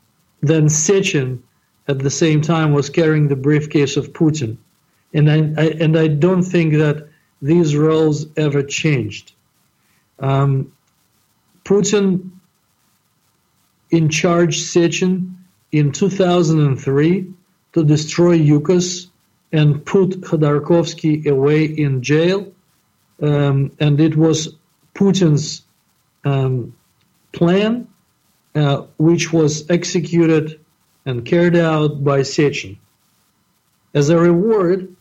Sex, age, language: male, 50-69, English